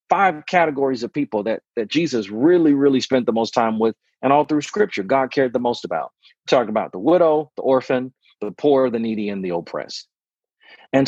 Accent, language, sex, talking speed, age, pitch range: American, English, male, 205 wpm, 40-59, 110-145 Hz